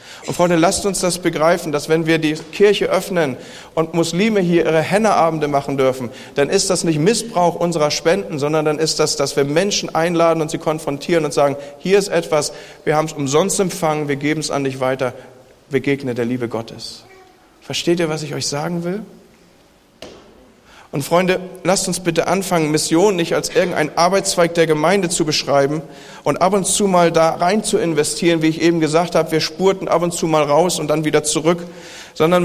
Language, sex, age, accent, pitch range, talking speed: German, male, 40-59, German, 150-180 Hz, 195 wpm